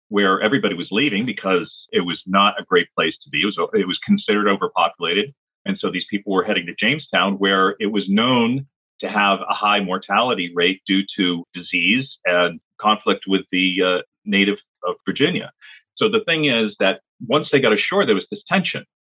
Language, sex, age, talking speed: English, male, 40-59, 190 wpm